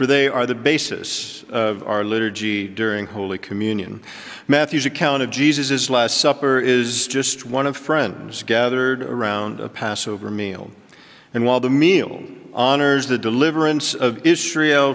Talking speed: 145 wpm